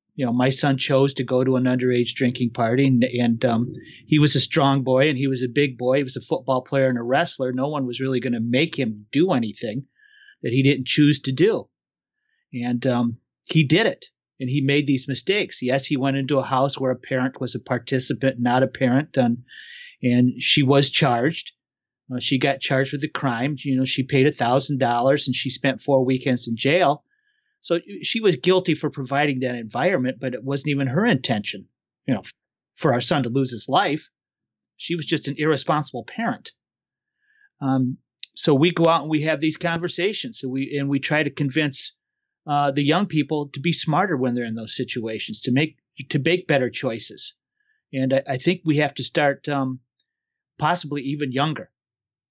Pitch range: 130-155 Hz